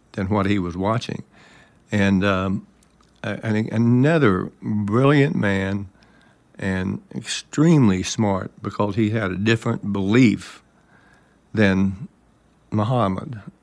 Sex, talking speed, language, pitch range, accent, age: male, 95 wpm, English, 95-115 Hz, American, 60-79